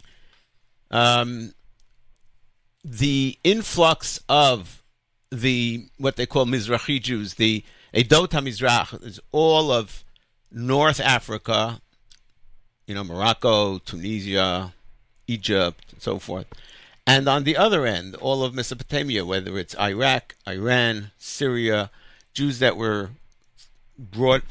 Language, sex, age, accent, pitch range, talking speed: English, male, 50-69, American, 115-155 Hz, 105 wpm